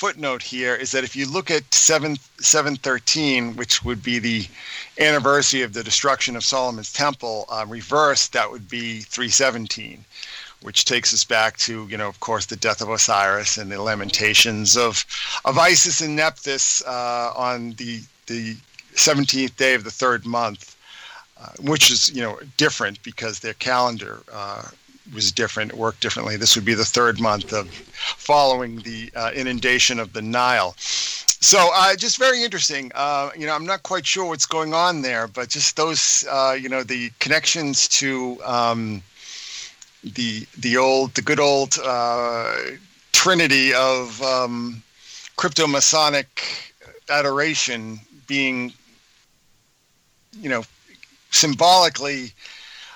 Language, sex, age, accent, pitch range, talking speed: English, male, 50-69, American, 115-145 Hz, 145 wpm